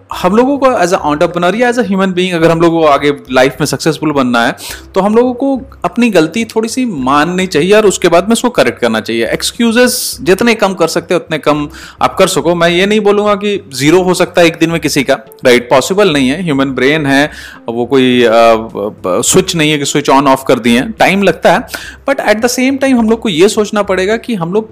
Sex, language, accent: male, Hindi, native